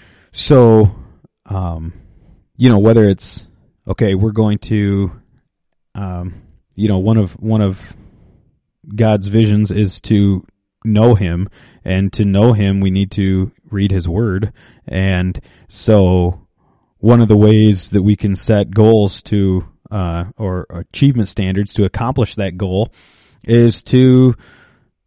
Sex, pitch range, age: male, 95-110 Hz, 30-49